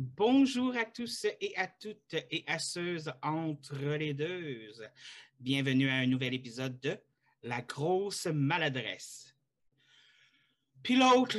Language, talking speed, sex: French, 120 wpm, male